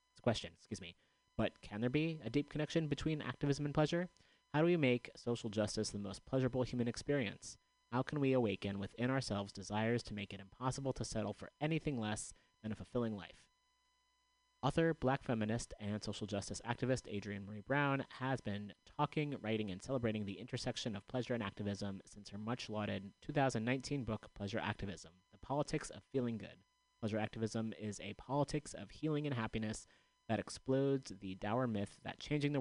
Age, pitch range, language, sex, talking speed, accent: 30-49, 105-135 Hz, English, male, 180 wpm, American